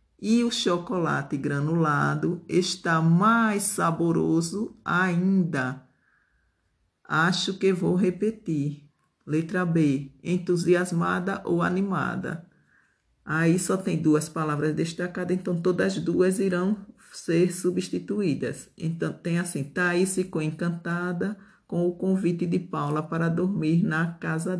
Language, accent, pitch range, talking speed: Portuguese, Brazilian, 160-180 Hz, 110 wpm